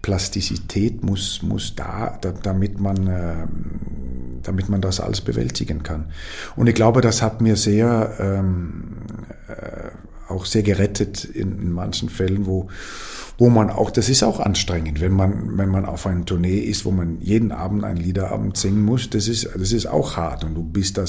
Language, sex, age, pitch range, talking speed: German, male, 50-69, 90-110 Hz, 180 wpm